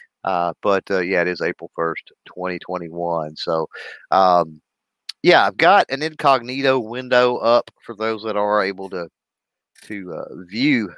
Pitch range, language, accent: 95-120 Hz, English, American